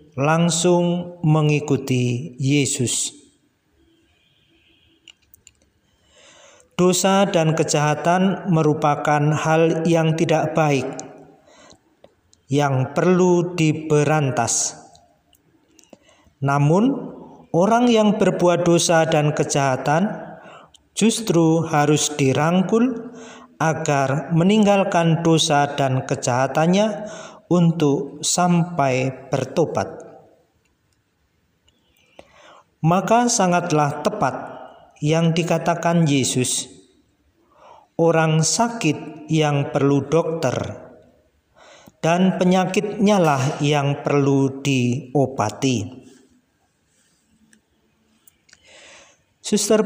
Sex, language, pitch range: male, Indonesian, 140-175 Hz